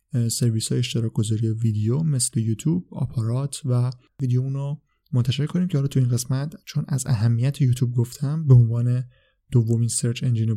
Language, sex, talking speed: Persian, male, 150 wpm